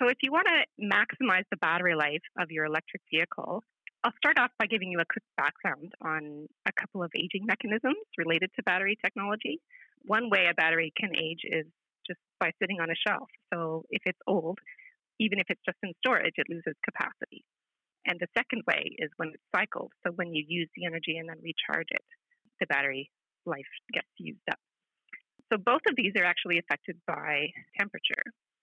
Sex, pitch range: female, 170-225 Hz